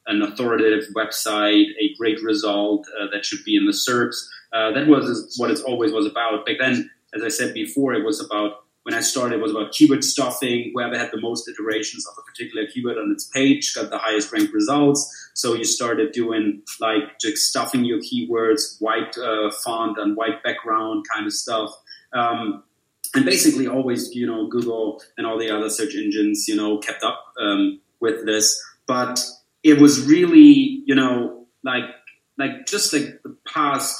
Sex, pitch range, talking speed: male, 110-155 Hz, 185 wpm